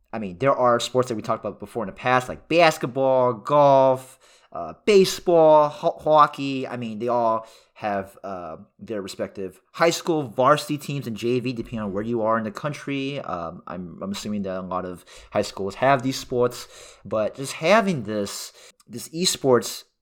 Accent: American